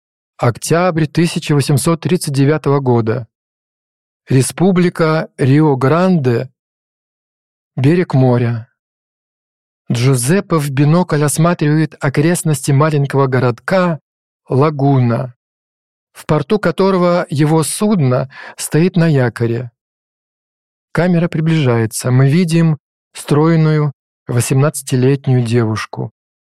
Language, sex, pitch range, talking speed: Russian, male, 125-155 Hz, 70 wpm